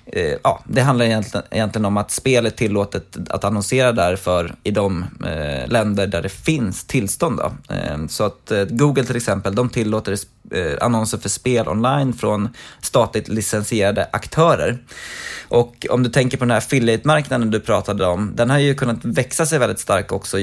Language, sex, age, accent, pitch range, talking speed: Swedish, male, 20-39, native, 105-130 Hz, 165 wpm